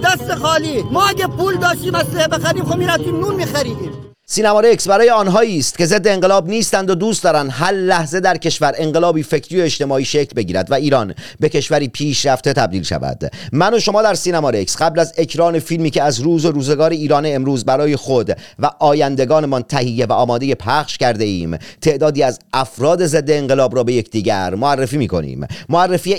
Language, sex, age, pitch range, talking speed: Persian, male, 40-59, 150-210 Hz, 175 wpm